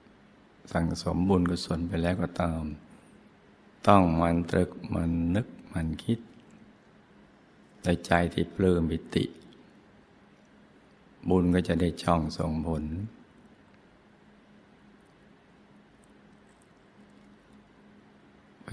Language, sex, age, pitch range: Thai, male, 60-79, 85-90 Hz